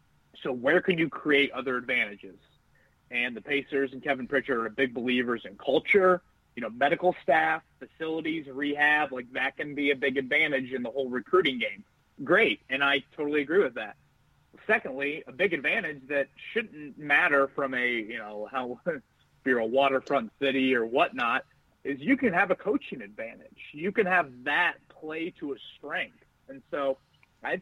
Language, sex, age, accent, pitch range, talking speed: English, male, 30-49, American, 130-175 Hz, 170 wpm